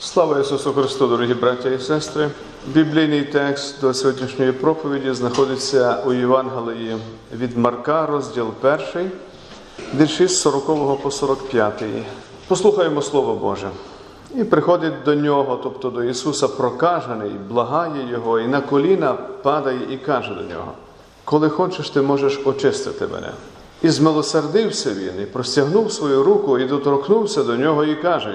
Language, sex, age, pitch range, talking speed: Ukrainian, male, 40-59, 130-200 Hz, 135 wpm